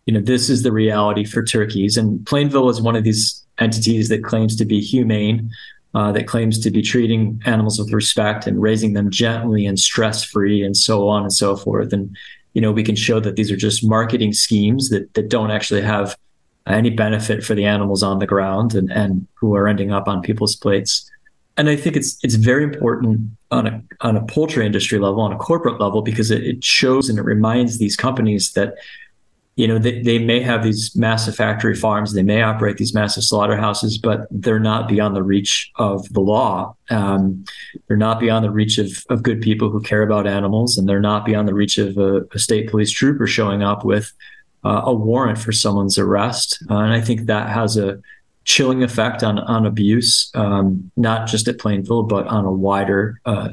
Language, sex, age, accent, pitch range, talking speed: English, male, 20-39, American, 105-115 Hz, 205 wpm